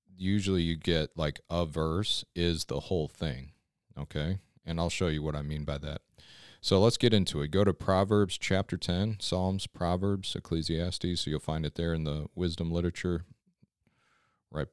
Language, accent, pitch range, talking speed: English, American, 80-95 Hz, 175 wpm